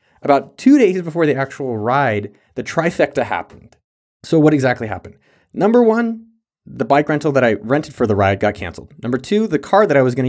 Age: 30-49